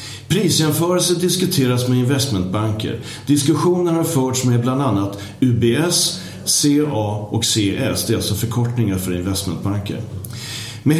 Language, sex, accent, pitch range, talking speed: Swedish, male, native, 110-145 Hz, 115 wpm